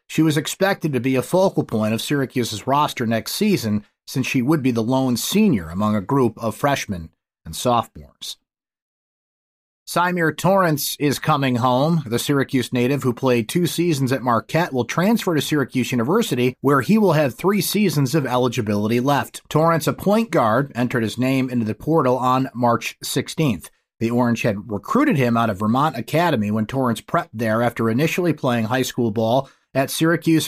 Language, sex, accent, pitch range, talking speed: English, male, American, 115-160 Hz, 175 wpm